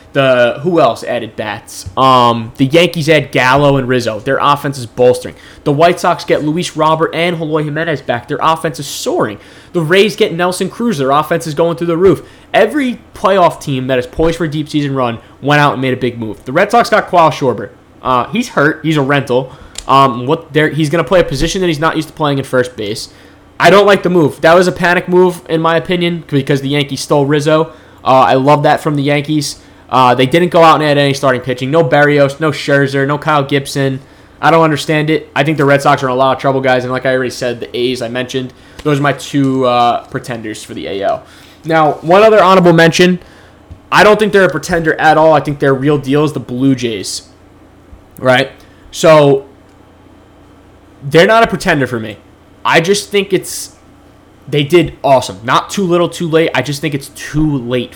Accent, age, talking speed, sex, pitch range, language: American, 20-39, 220 wpm, male, 125-165 Hz, English